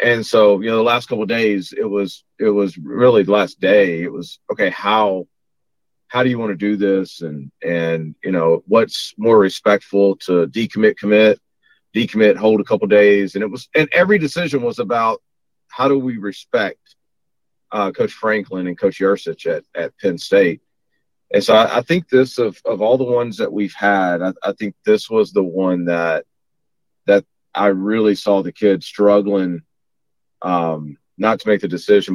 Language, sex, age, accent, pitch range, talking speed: English, male, 40-59, American, 90-110 Hz, 190 wpm